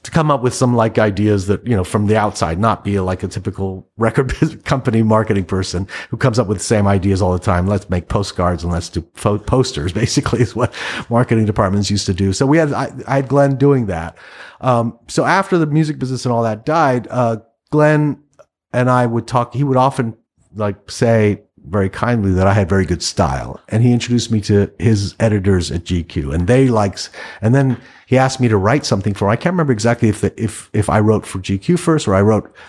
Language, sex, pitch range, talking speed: English, male, 95-125 Hz, 230 wpm